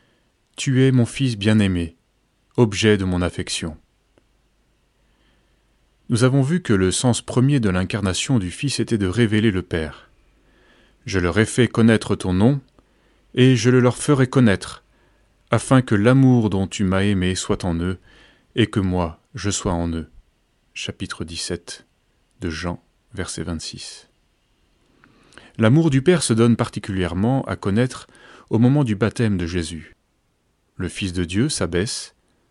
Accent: French